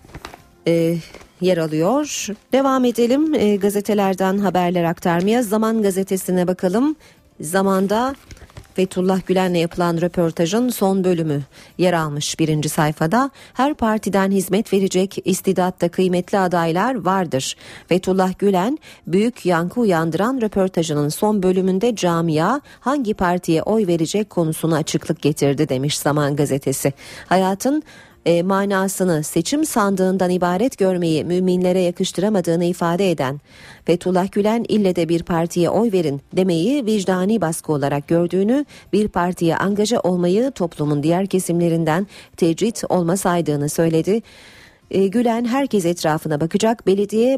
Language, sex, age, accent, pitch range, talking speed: Turkish, female, 40-59, native, 165-205 Hz, 115 wpm